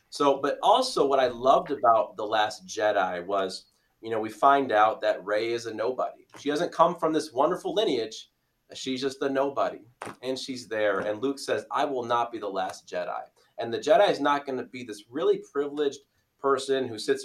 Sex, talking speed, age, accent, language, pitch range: male, 205 wpm, 30-49, American, English, 105-135 Hz